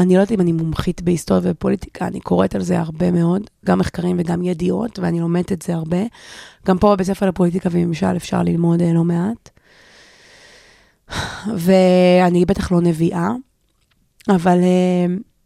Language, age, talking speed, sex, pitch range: Hebrew, 20-39, 150 wpm, female, 175-195 Hz